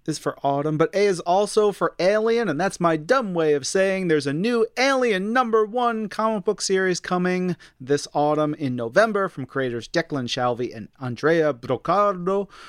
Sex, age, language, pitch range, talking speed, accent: male, 30-49, English, 130-185 Hz, 175 wpm, American